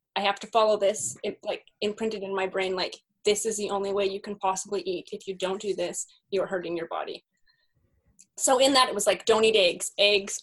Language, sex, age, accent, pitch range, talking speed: English, female, 20-39, American, 200-300 Hz, 230 wpm